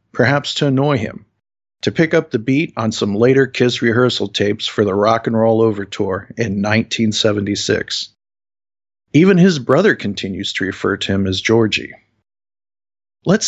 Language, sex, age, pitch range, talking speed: English, male, 50-69, 105-135 Hz, 155 wpm